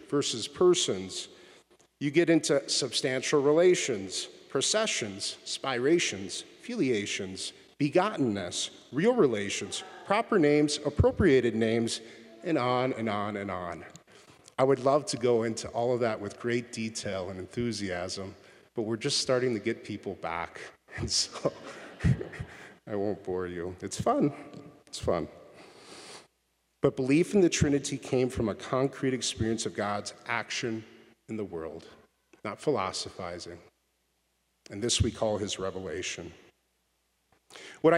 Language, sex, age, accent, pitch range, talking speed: English, male, 40-59, American, 100-140 Hz, 125 wpm